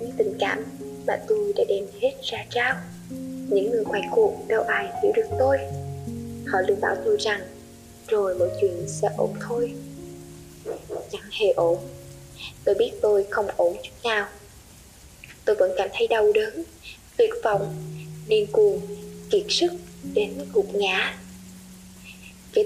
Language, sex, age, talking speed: Vietnamese, female, 10-29, 150 wpm